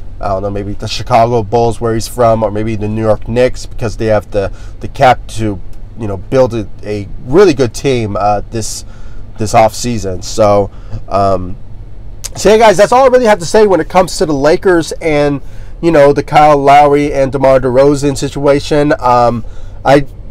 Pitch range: 105-140 Hz